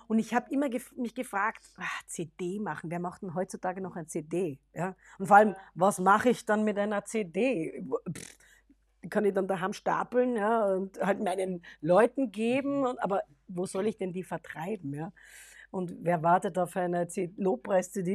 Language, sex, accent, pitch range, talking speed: English, female, German, 190-250 Hz, 160 wpm